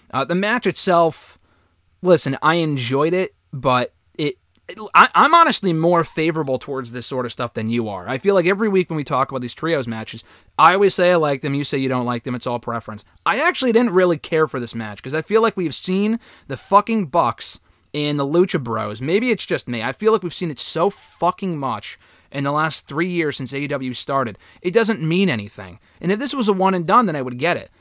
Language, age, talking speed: English, 20-39, 235 wpm